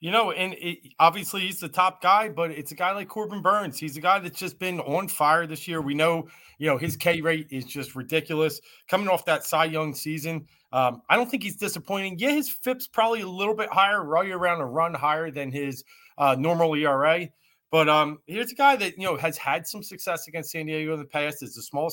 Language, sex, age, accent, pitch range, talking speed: English, male, 30-49, American, 150-190 Hz, 240 wpm